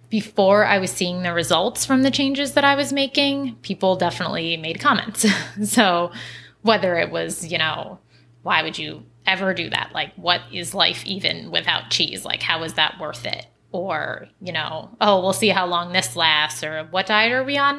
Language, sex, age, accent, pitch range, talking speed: English, female, 20-39, American, 160-215 Hz, 195 wpm